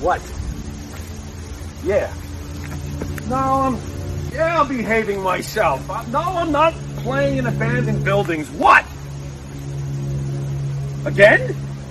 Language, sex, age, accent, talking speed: English, male, 40-59, American, 95 wpm